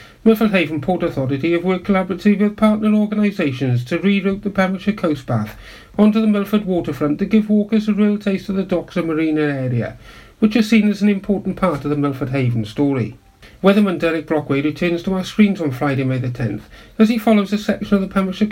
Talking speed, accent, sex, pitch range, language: 210 wpm, British, male, 145-200 Hz, English